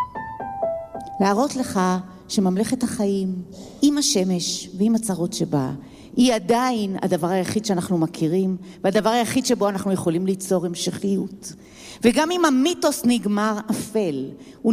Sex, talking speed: female, 115 wpm